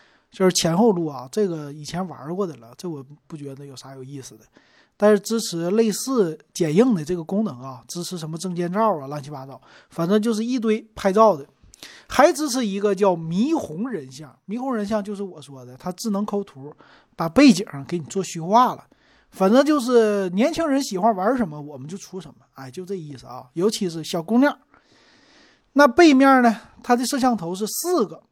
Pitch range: 155-225 Hz